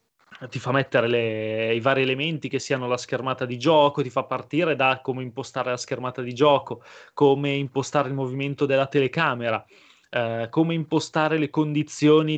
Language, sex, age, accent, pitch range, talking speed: Italian, male, 20-39, native, 130-155 Hz, 160 wpm